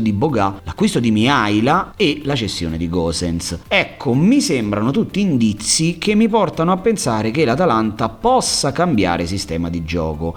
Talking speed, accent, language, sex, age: 155 wpm, native, Italian, male, 40-59